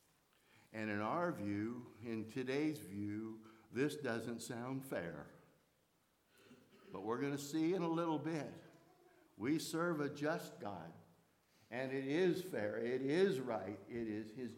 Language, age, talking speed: English, 60-79, 145 wpm